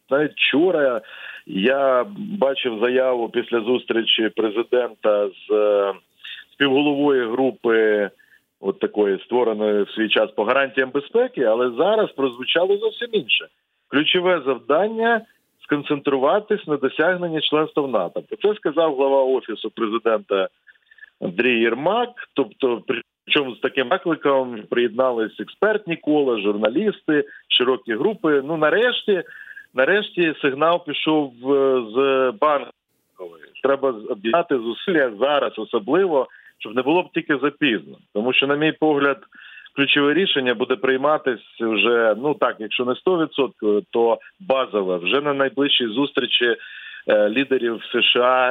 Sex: male